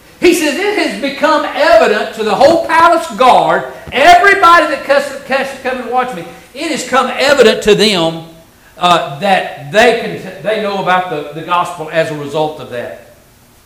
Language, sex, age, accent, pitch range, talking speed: English, male, 50-69, American, 215-315 Hz, 170 wpm